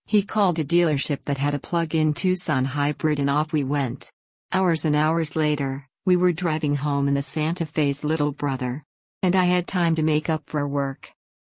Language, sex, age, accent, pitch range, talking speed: English, female, 50-69, American, 140-165 Hz, 195 wpm